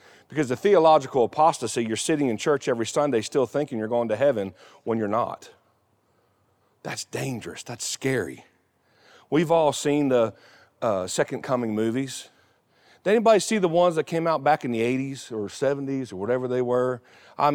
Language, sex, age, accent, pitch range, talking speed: English, male, 40-59, American, 125-165 Hz, 170 wpm